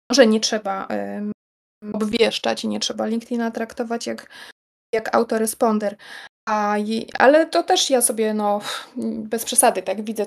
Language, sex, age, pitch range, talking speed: Polish, female, 20-39, 210-245 Hz, 145 wpm